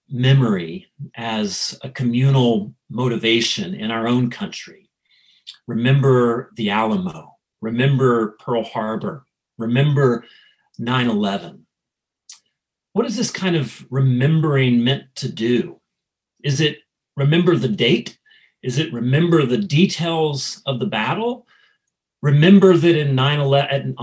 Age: 40-59